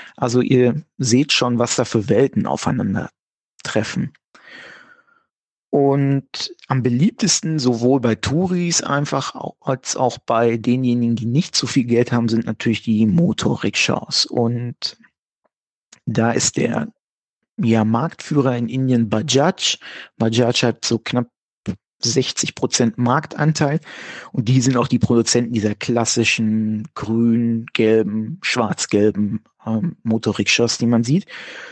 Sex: male